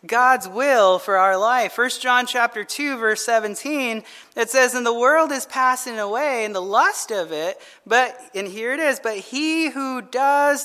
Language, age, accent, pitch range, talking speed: English, 30-49, American, 210-275 Hz, 185 wpm